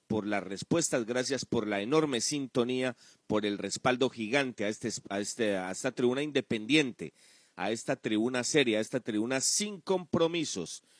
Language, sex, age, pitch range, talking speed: Spanish, male, 40-59, 110-150 Hz, 140 wpm